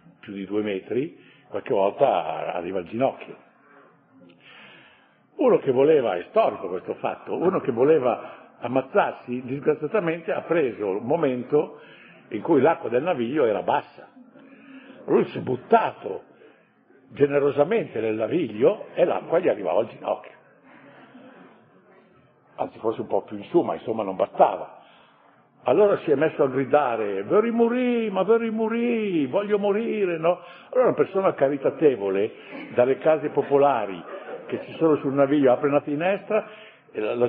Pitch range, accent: 140-230 Hz, native